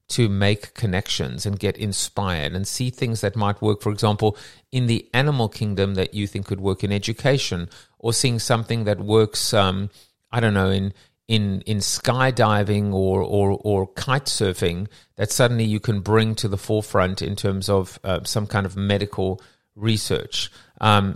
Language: English